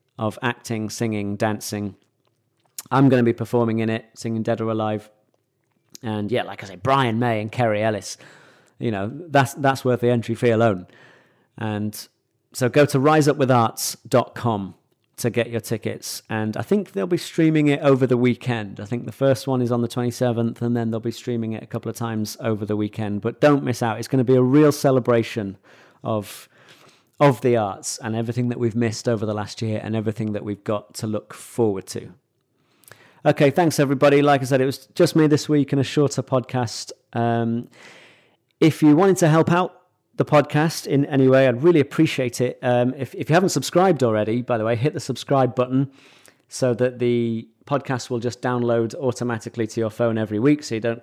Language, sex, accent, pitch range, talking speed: English, male, British, 110-135 Hz, 200 wpm